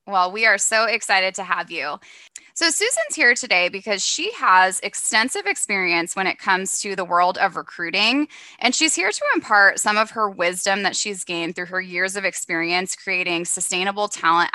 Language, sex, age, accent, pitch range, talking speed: English, female, 20-39, American, 180-225 Hz, 185 wpm